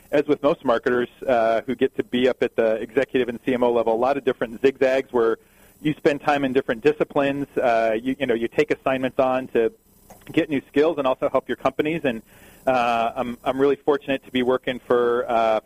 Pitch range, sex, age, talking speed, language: 120-140 Hz, male, 40-59, 215 wpm, English